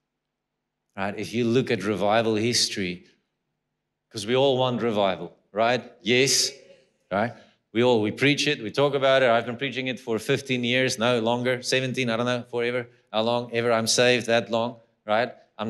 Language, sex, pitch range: English, male, 115-130 Hz